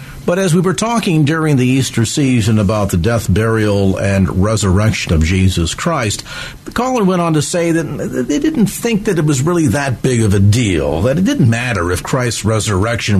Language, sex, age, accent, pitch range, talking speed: English, male, 50-69, American, 110-145 Hz, 200 wpm